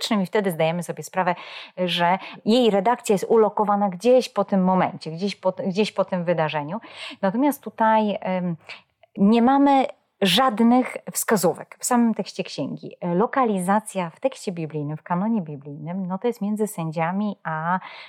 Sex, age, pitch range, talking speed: female, 30-49, 165-210 Hz, 145 wpm